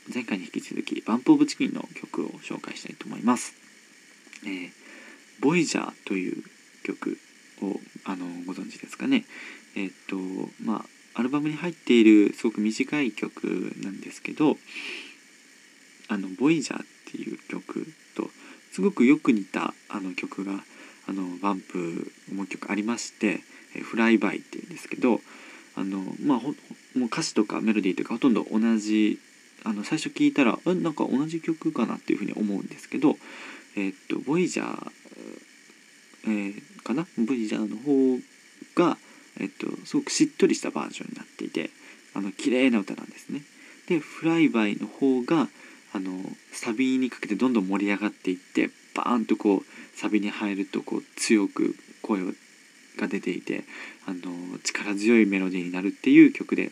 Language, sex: Japanese, male